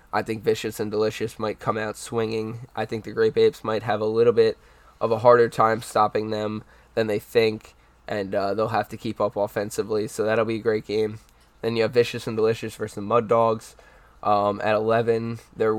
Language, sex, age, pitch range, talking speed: English, male, 10-29, 105-115 Hz, 215 wpm